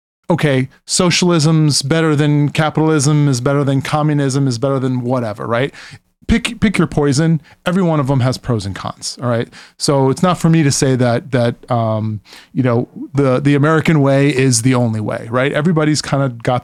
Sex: male